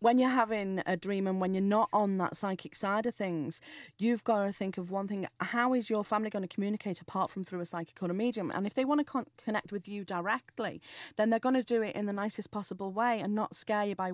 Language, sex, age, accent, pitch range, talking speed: English, female, 30-49, British, 180-215 Hz, 265 wpm